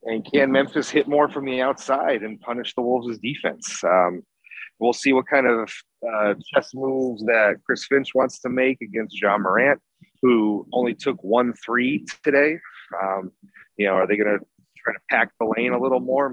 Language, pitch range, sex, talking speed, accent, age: English, 110-135 Hz, male, 190 wpm, American, 30-49